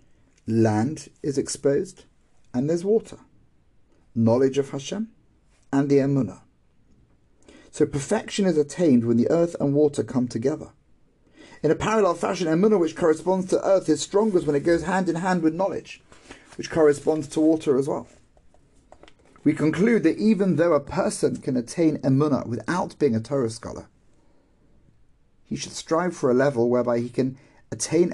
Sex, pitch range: male, 120-160 Hz